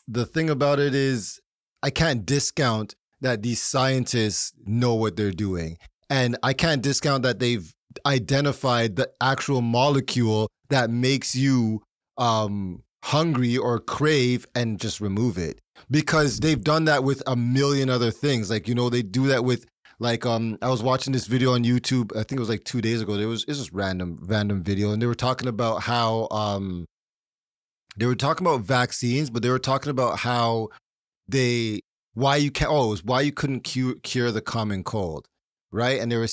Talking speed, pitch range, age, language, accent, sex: 185 wpm, 110-130 Hz, 30-49, English, American, male